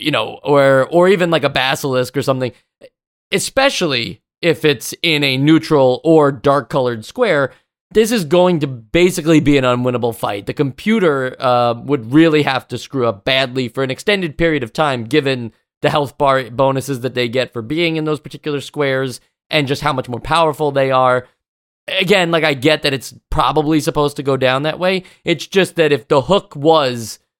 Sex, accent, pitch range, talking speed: male, American, 130-160 Hz, 190 wpm